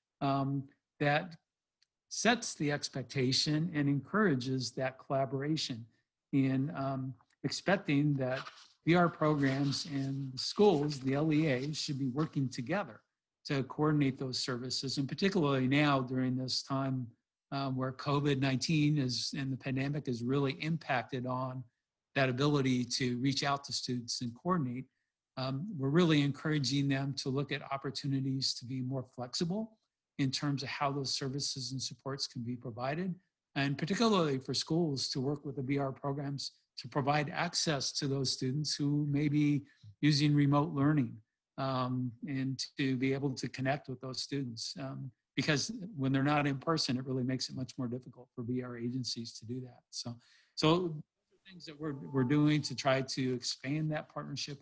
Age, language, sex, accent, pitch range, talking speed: 50-69, English, male, American, 130-145 Hz, 155 wpm